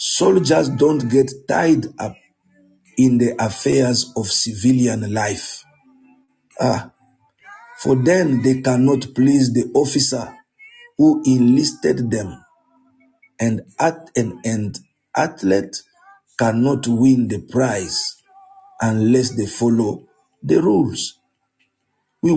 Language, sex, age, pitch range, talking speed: English, male, 50-69, 120-180 Hz, 100 wpm